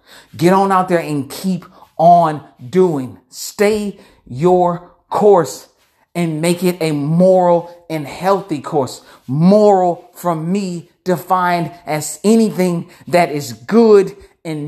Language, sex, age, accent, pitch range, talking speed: English, male, 40-59, American, 155-190 Hz, 120 wpm